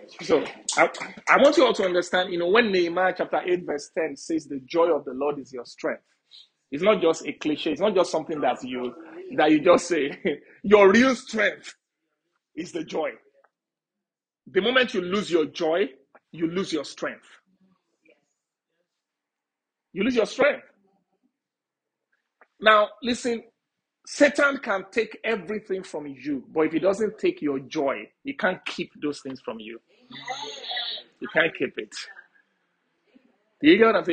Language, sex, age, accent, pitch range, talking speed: English, male, 40-59, Nigerian, 145-220 Hz, 155 wpm